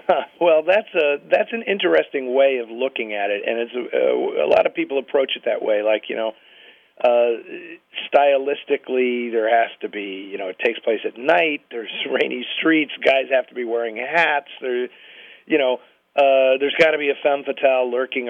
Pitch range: 120-155 Hz